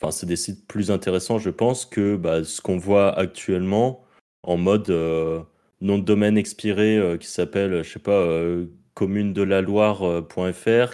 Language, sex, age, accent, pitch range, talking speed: French, male, 30-49, French, 85-110 Hz, 180 wpm